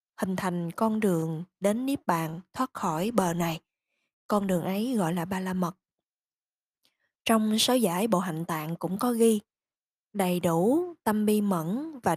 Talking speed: 170 wpm